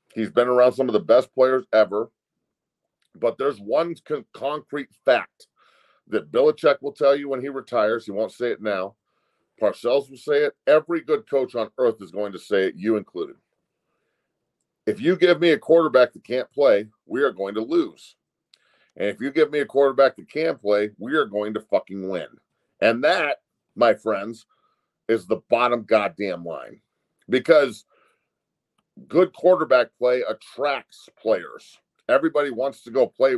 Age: 40-59